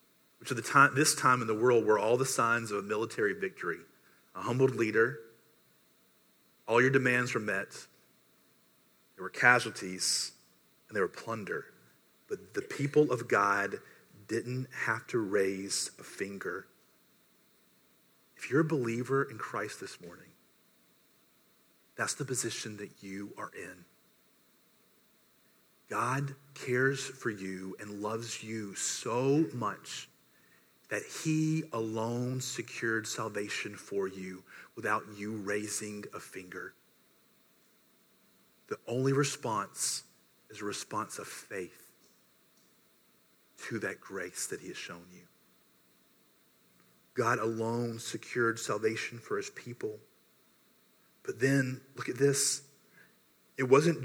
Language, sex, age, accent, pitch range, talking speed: English, male, 40-59, American, 110-140 Hz, 120 wpm